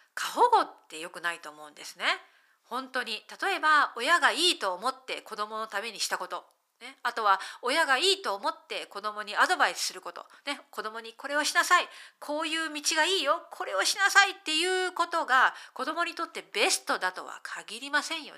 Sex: female